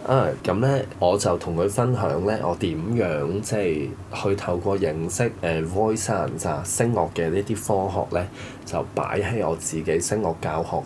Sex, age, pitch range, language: male, 20-39, 85-110 Hz, Chinese